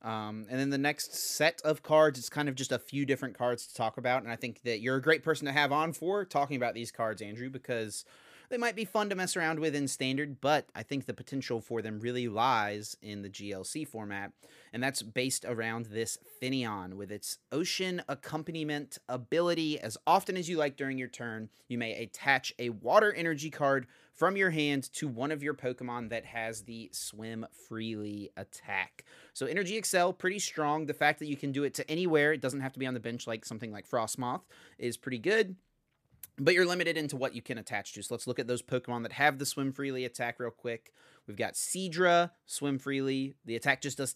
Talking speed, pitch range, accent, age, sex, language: 220 wpm, 115-150 Hz, American, 30-49, male, English